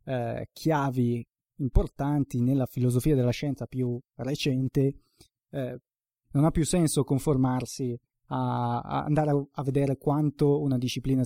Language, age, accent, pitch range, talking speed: Italian, 20-39, native, 120-145 Hz, 130 wpm